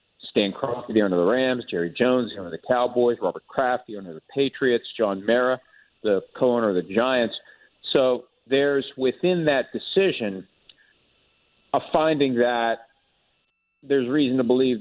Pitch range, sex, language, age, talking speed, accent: 115-130 Hz, male, English, 50-69, 160 wpm, American